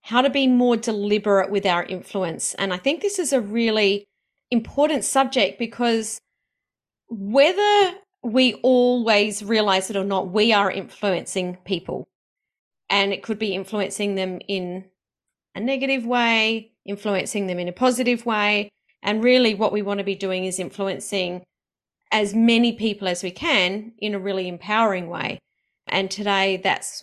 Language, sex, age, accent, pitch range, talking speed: English, female, 30-49, Australian, 195-240 Hz, 150 wpm